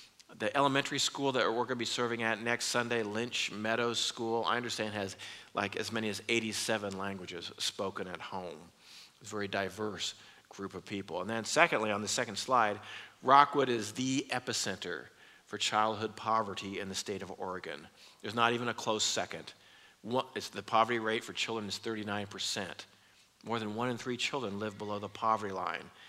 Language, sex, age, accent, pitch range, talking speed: English, male, 50-69, American, 110-130 Hz, 175 wpm